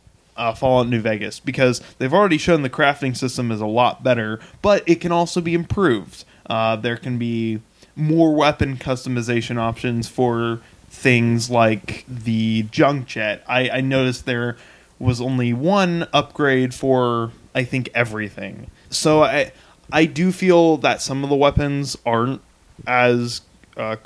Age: 20-39